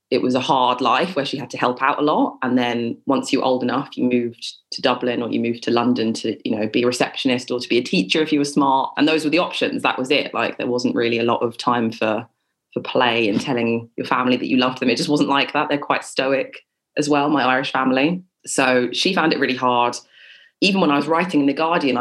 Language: English